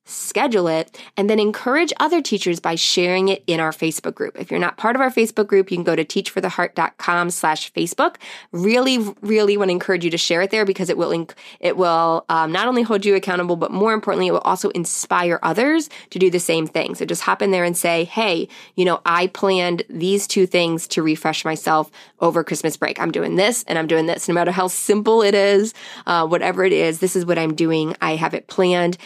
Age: 20-39